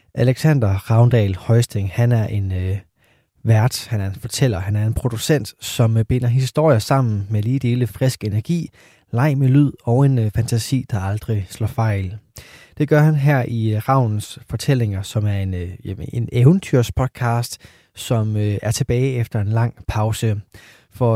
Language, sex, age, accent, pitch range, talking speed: Danish, male, 20-39, native, 105-130 Hz, 170 wpm